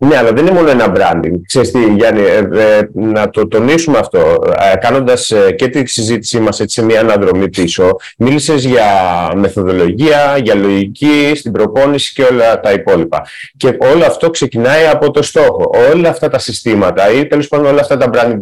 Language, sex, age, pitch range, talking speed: Greek, male, 30-49, 115-160 Hz, 175 wpm